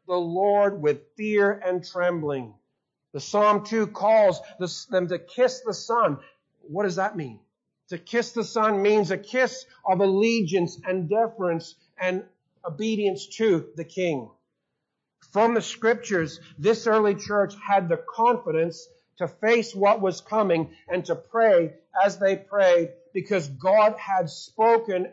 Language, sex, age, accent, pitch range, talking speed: English, male, 50-69, American, 170-220 Hz, 140 wpm